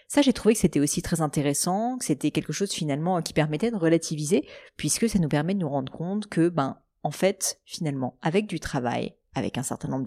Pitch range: 145-200 Hz